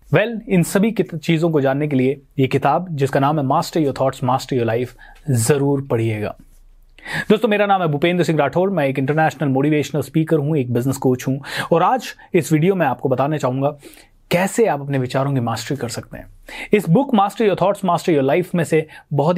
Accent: native